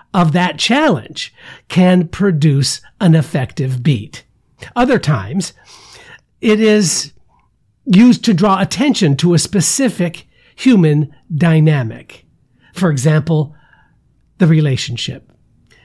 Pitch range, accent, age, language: 155-205 Hz, American, 60-79, English